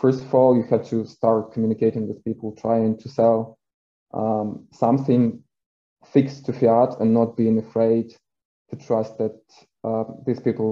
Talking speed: 155 wpm